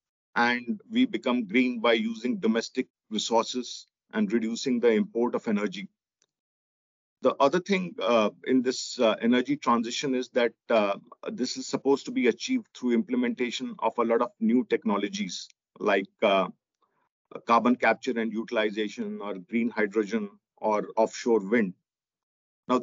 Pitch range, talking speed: 115-170 Hz, 140 wpm